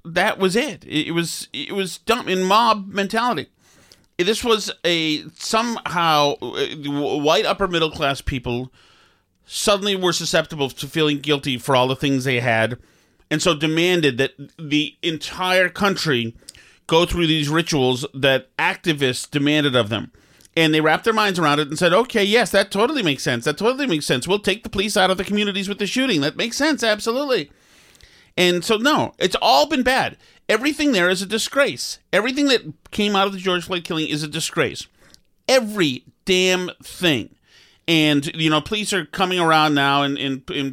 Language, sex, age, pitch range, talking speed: English, male, 40-59, 140-205 Hz, 175 wpm